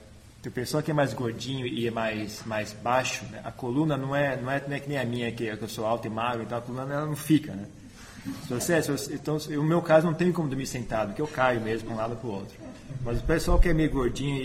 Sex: male